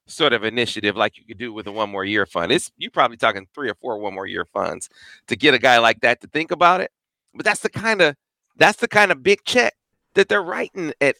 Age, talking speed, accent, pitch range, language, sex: 40-59, 265 wpm, American, 135-180 Hz, English, male